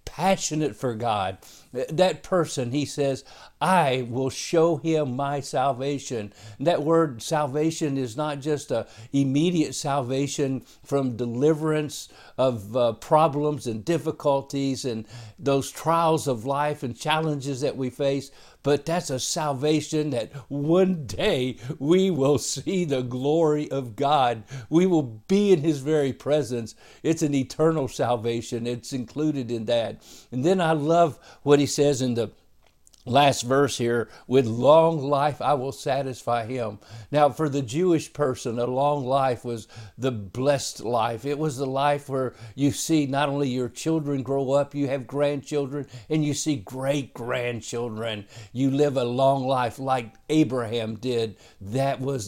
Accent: American